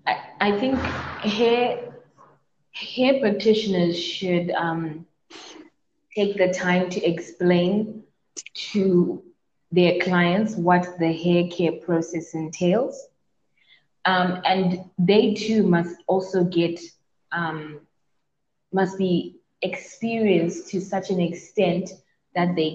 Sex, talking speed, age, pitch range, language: female, 100 wpm, 20-39, 165-200 Hz, English